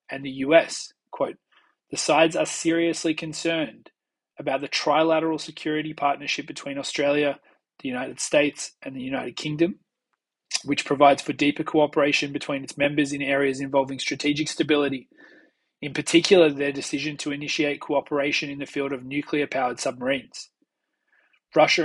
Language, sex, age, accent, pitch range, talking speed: English, male, 20-39, Australian, 140-160 Hz, 135 wpm